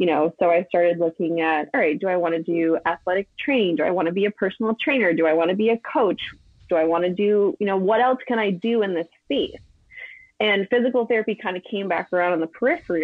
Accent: American